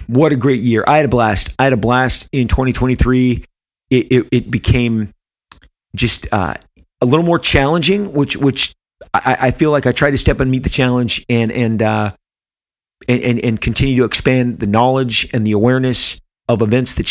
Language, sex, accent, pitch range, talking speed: English, male, American, 115-130 Hz, 195 wpm